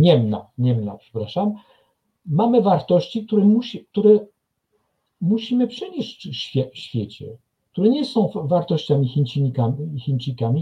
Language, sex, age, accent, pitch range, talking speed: Polish, male, 50-69, native, 115-185 Hz, 90 wpm